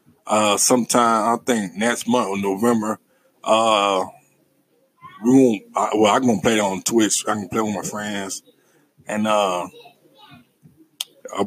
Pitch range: 110-135 Hz